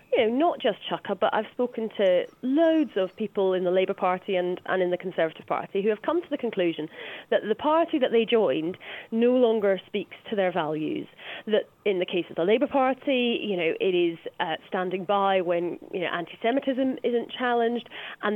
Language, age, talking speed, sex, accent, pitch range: English, 30-49, 205 wpm, female, British, 185-270 Hz